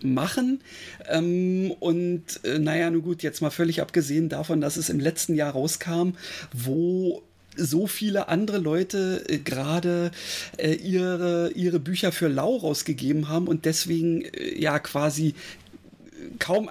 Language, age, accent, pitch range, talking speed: German, 40-59, German, 150-180 Hz, 135 wpm